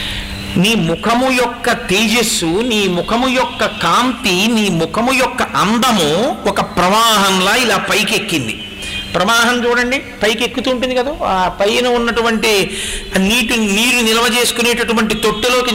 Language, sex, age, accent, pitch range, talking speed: Telugu, male, 50-69, native, 170-240 Hz, 120 wpm